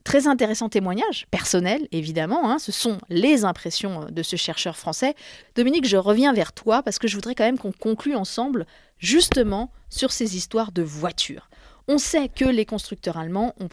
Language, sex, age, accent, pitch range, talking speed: French, female, 30-49, French, 175-245 Hz, 180 wpm